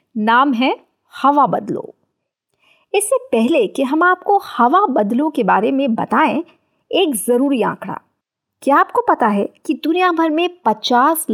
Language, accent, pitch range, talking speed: Hindi, native, 245-325 Hz, 145 wpm